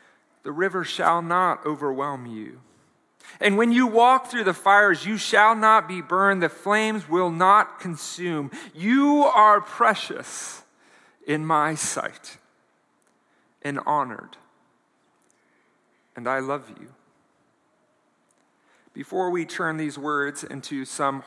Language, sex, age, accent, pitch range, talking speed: English, male, 40-59, American, 130-180 Hz, 120 wpm